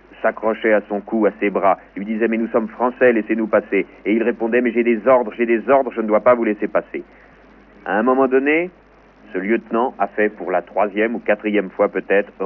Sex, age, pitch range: male, 40-59, 95-115 Hz